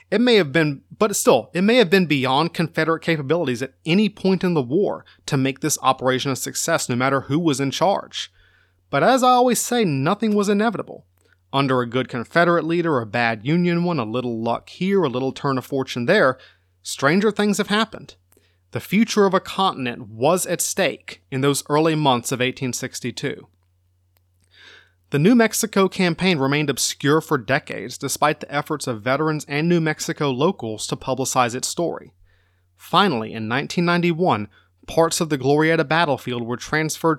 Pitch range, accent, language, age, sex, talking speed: 125-170 Hz, American, English, 30-49, male, 175 wpm